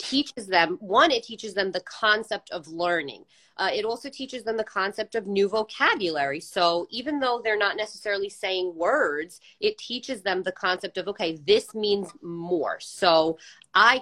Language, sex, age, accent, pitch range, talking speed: English, female, 30-49, American, 170-215 Hz, 170 wpm